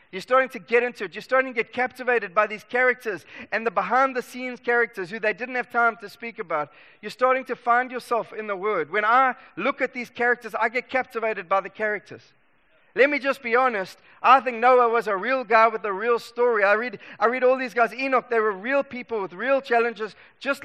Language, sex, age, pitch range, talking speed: English, male, 30-49, 215-255 Hz, 225 wpm